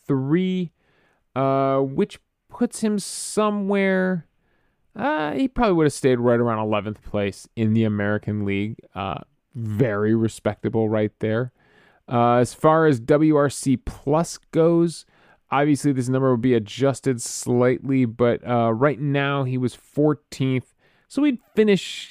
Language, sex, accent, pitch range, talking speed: English, male, American, 110-150 Hz, 135 wpm